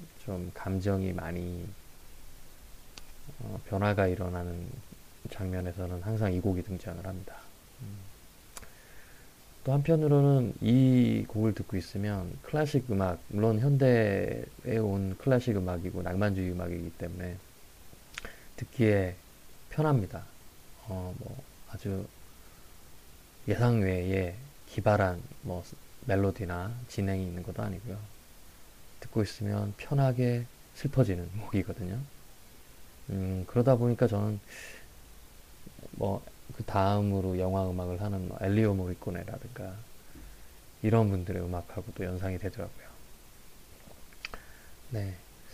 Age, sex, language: 20-39, male, Korean